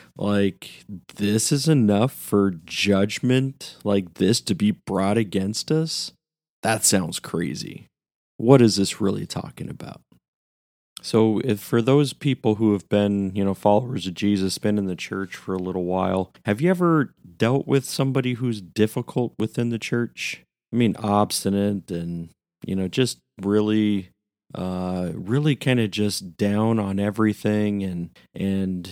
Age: 40-59